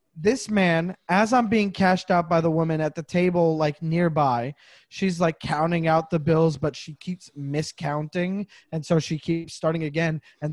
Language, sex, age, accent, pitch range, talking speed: English, male, 20-39, American, 165-230 Hz, 180 wpm